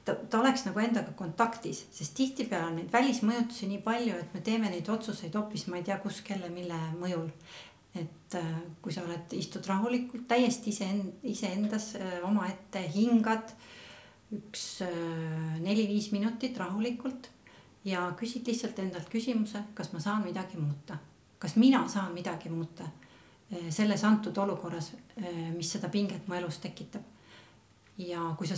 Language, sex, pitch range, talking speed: English, female, 180-220 Hz, 145 wpm